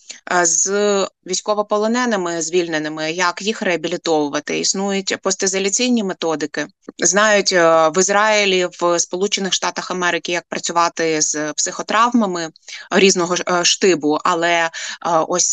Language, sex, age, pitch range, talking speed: Ukrainian, female, 20-39, 170-200 Hz, 85 wpm